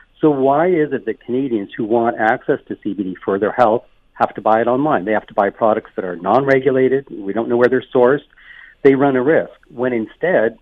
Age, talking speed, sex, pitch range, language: 50-69, 220 wpm, male, 115-150 Hz, English